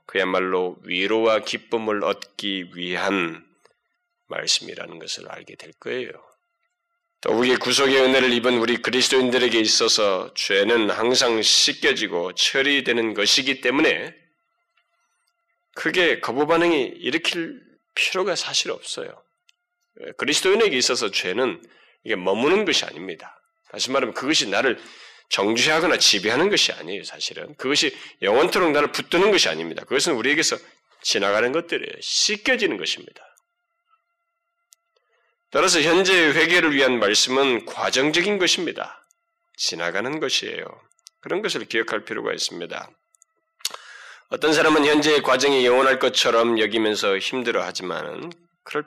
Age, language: 20-39, Korean